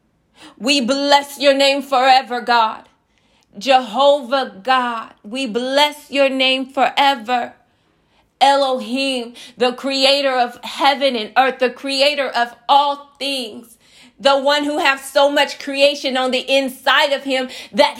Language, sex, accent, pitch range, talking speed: English, female, American, 250-290 Hz, 125 wpm